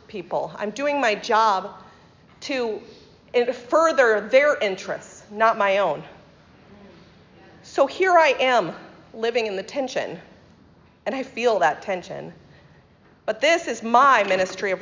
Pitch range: 200-270 Hz